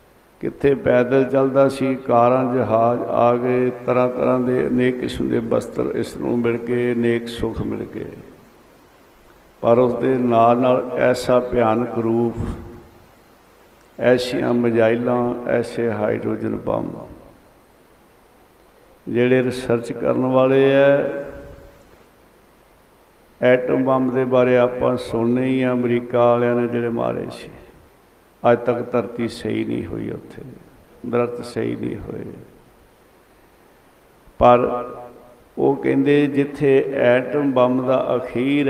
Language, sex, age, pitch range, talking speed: Punjabi, male, 60-79, 115-125 Hz, 115 wpm